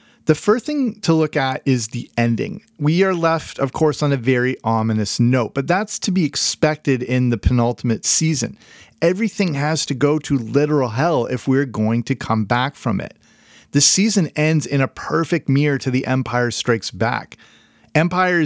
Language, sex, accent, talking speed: English, male, American, 180 wpm